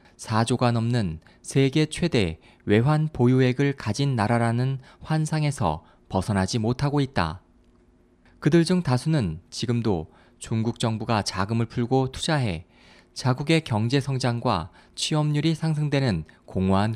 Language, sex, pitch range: Korean, male, 110-155 Hz